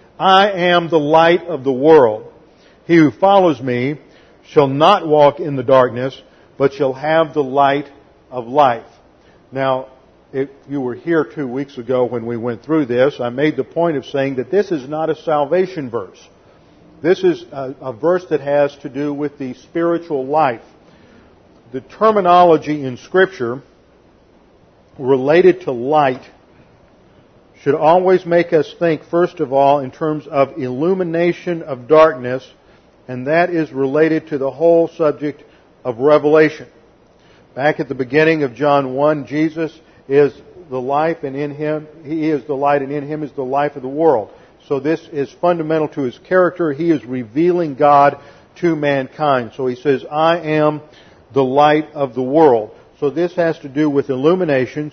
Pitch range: 135-165 Hz